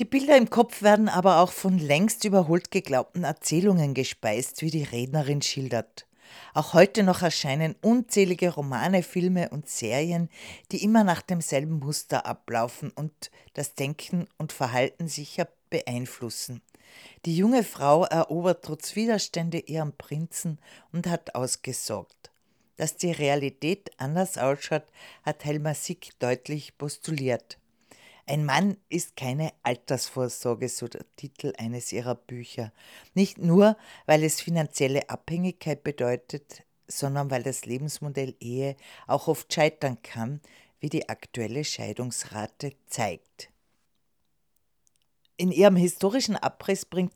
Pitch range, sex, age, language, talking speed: 135-175 Hz, female, 40-59, German, 125 wpm